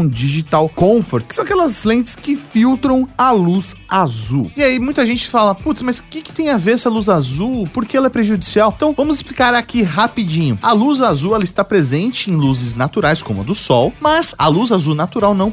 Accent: Brazilian